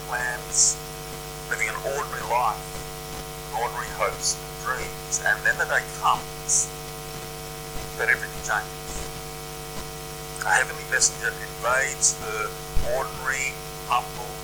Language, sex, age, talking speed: English, male, 50-69, 100 wpm